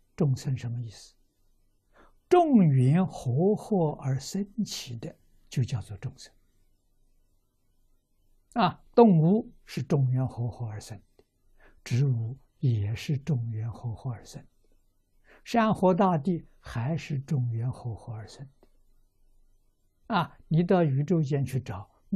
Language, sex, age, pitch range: Chinese, male, 60-79, 100-145 Hz